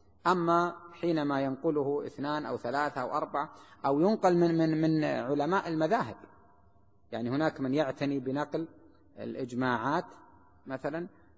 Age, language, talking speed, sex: 30-49, Arabic, 115 wpm, male